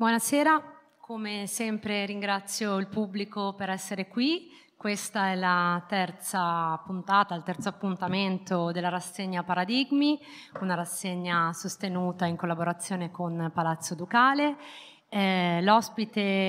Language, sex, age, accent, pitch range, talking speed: Italian, female, 30-49, native, 175-205 Hz, 110 wpm